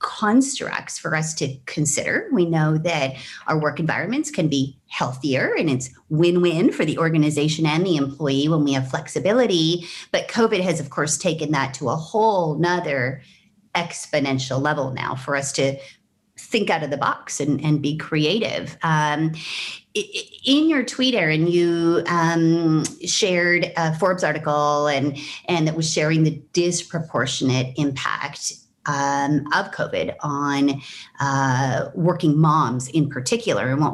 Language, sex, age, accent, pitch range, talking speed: English, female, 30-49, American, 145-175 Hz, 145 wpm